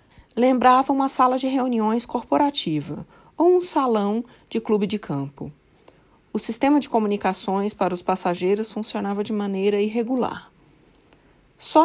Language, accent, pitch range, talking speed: Portuguese, Brazilian, 190-240 Hz, 125 wpm